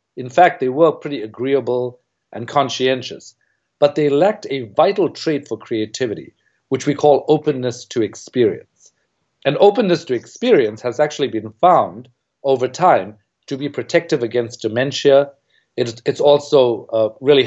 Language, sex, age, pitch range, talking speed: English, male, 50-69, 125-165 Hz, 135 wpm